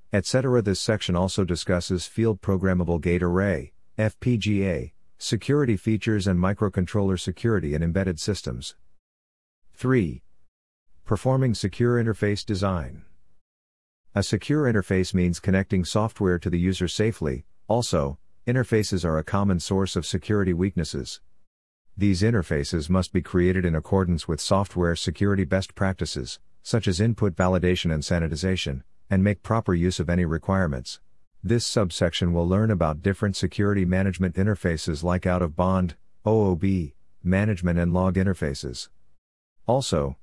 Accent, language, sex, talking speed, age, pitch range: American, English, male, 125 wpm, 50-69, 85-105 Hz